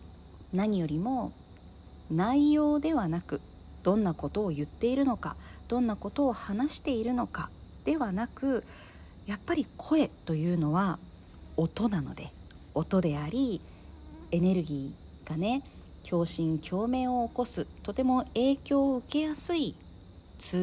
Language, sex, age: Japanese, female, 40-59